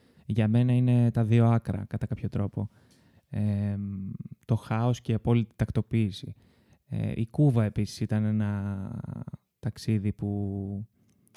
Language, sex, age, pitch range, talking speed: Greek, male, 20-39, 105-120 Hz, 125 wpm